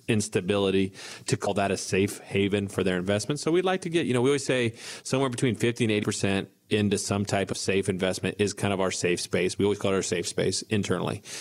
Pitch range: 95-110 Hz